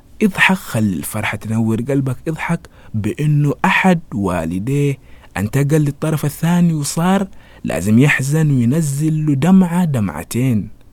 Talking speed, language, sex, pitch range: 105 wpm, Arabic, male, 105-160 Hz